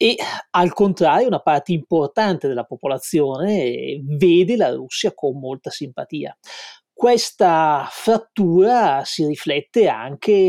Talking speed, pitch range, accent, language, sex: 110 wpm, 150-195 Hz, native, Italian, male